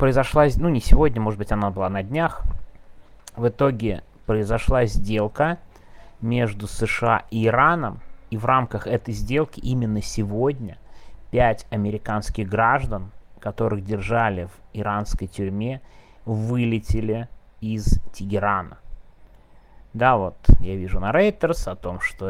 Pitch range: 95-120 Hz